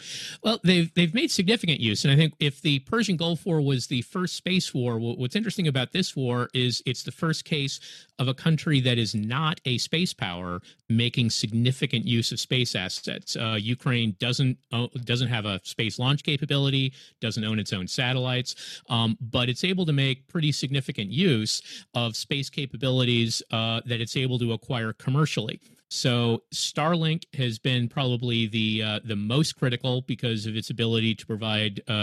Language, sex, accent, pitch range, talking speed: English, male, American, 115-145 Hz, 180 wpm